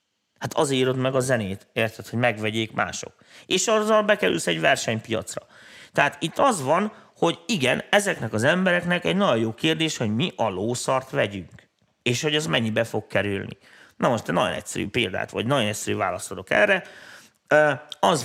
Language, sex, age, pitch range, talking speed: Hungarian, male, 30-49, 110-150 Hz, 170 wpm